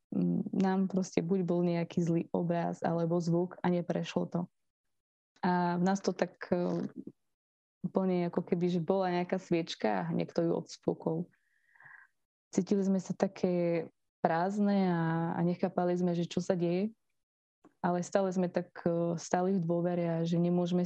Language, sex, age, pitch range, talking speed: Slovak, female, 20-39, 170-190 Hz, 140 wpm